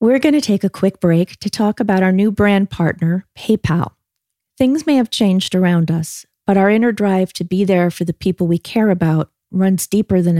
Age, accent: 40-59, American